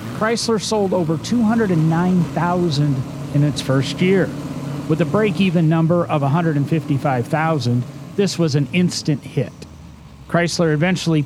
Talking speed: 110 wpm